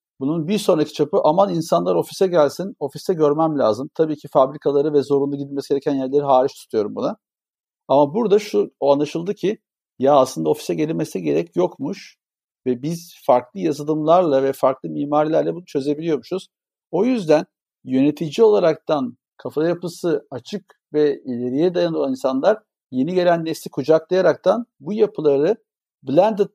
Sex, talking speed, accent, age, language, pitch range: male, 140 wpm, native, 50-69, Turkish, 145-190 Hz